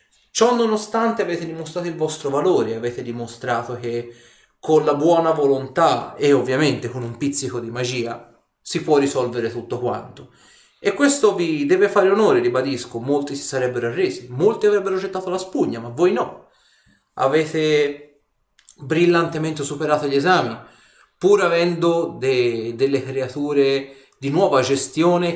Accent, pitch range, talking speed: native, 125-160 Hz, 135 wpm